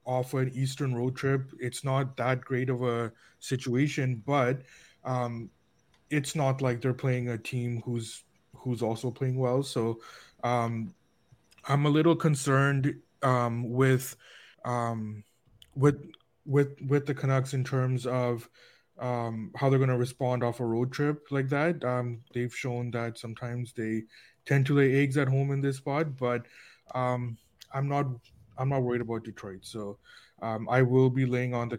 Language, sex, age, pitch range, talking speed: English, male, 20-39, 120-135 Hz, 165 wpm